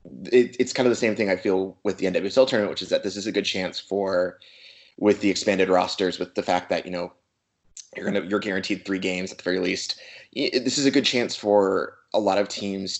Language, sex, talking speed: English, male, 240 wpm